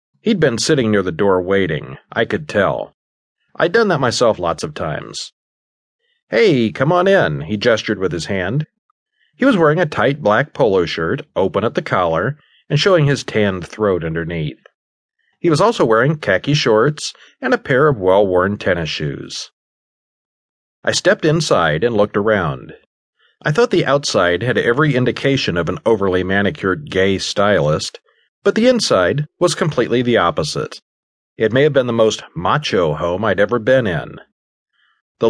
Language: English